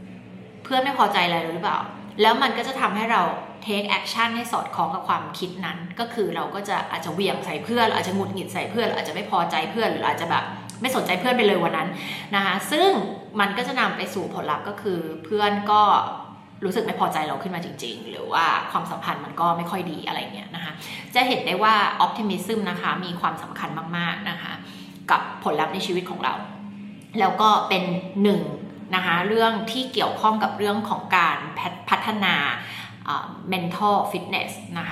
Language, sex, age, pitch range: Thai, female, 20-39, 175-215 Hz